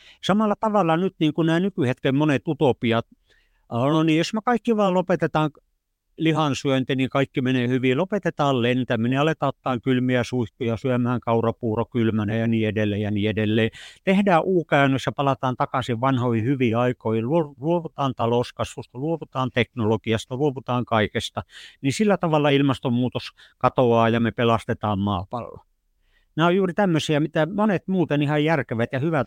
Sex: male